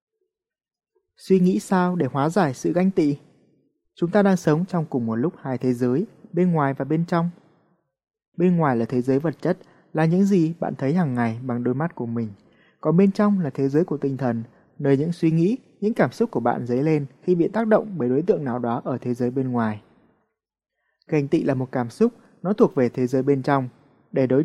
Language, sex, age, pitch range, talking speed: Vietnamese, male, 20-39, 130-180 Hz, 230 wpm